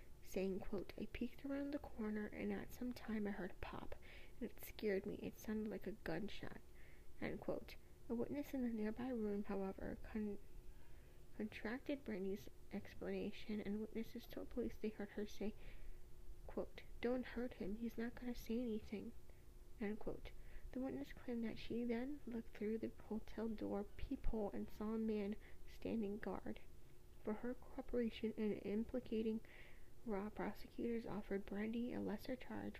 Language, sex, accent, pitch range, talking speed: English, female, American, 200-230 Hz, 160 wpm